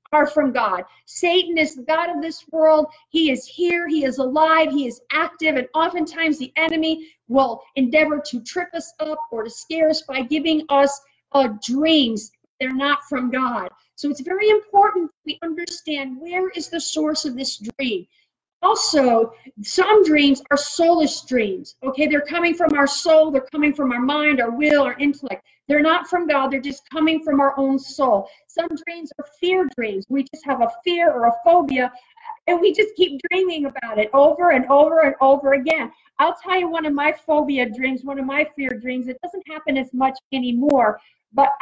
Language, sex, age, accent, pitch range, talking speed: English, female, 40-59, American, 270-330 Hz, 190 wpm